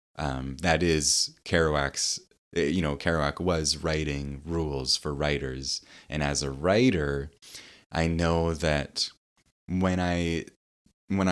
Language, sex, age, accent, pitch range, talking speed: English, male, 20-39, American, 75-95 Hz, 115 wpm